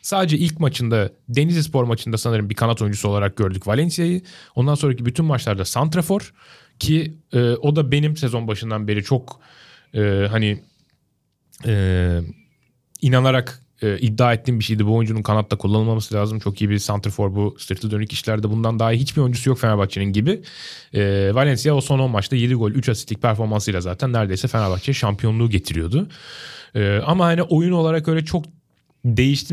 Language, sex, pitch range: Turkish, male, 105-145 Hz